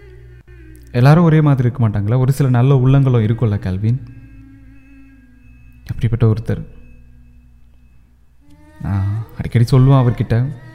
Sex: male